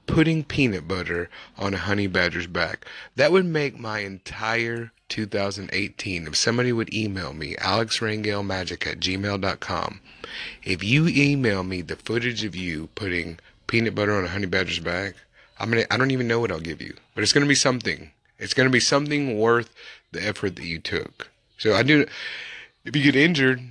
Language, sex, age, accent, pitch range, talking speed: English, male, 30-49, American, 95-120 Hz, 180 wpm